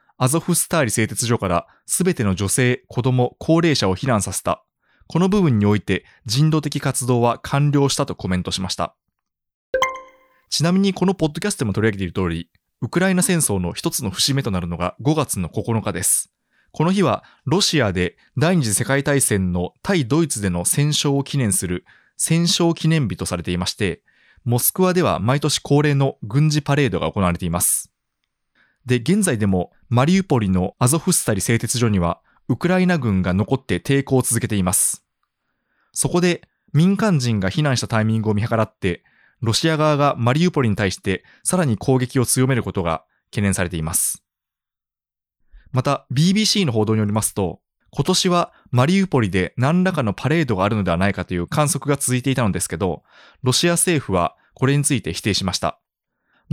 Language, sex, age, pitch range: Japanese, male, 20-39, 100-155 Hz